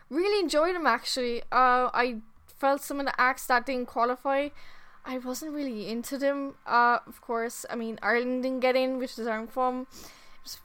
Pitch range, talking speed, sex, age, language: 235-275 Hz, 195 wpm, female, 10-29, English